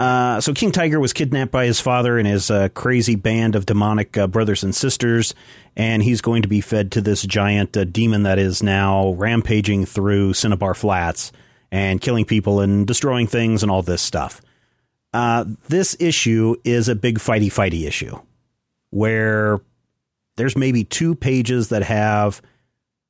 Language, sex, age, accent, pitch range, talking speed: English, male, 40-59, American, 100-130 Hz, 165 wpm